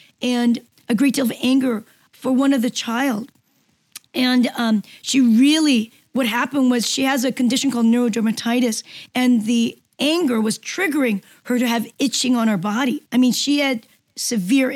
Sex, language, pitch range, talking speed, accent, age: female, English, 230-265 Hz, 165 wpm, American, 40-59